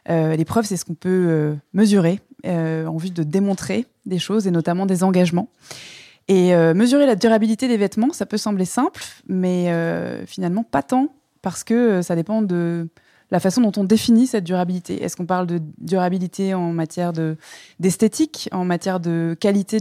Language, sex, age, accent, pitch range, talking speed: French, female, 20-39, French, 170-210 Hz, 190 wpm